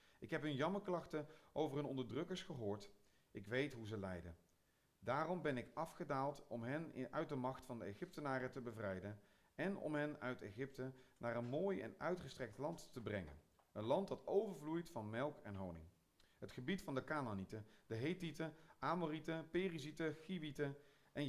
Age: 40-59